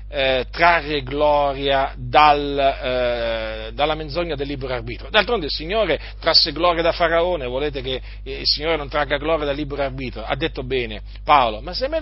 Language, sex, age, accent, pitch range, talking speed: Italian, male, 40-59, native, 115-175 Hz, 175 wpm